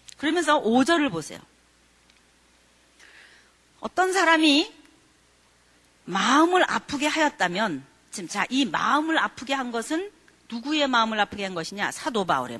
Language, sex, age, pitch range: Korean, female, 40-59, 195-295 Hz